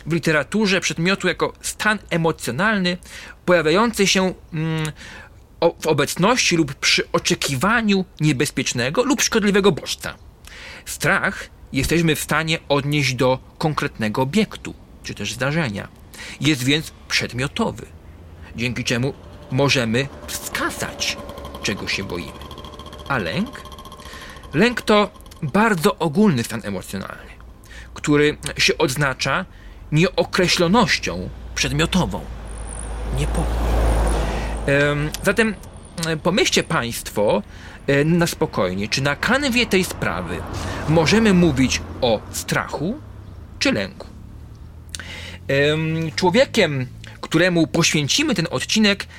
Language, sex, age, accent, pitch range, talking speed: Polish, male, 40-59, native, 105-175 Hz, 90 wpm